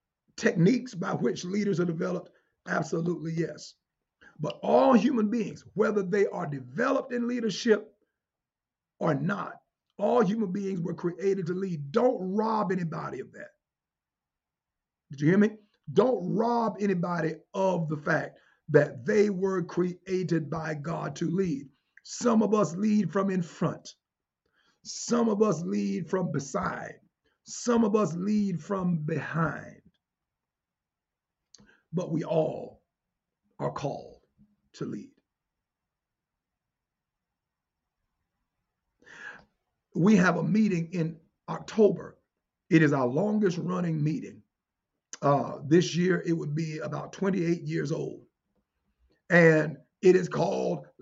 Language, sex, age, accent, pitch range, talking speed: English, male, 50-69, American, 160-210 Hz, 120 wpm